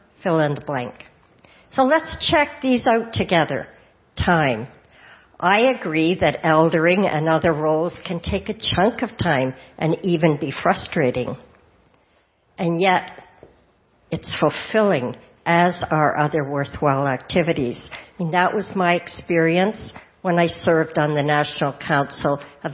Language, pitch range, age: English, 145-175 Hz, 60-79